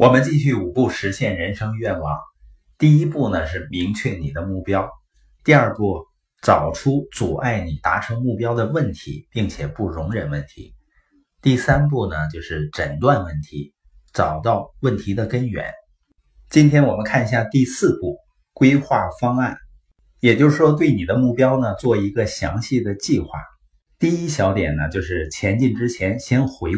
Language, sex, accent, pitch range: Chinese, male, native, 80-130 Hz